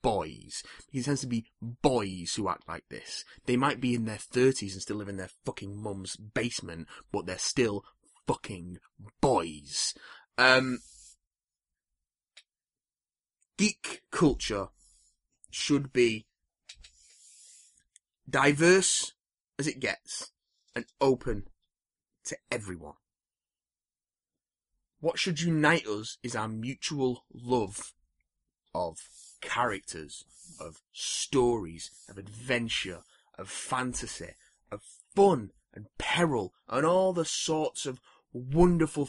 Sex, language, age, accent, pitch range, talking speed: male, English, 30-49, British, 100-135 Hz, 105 wpm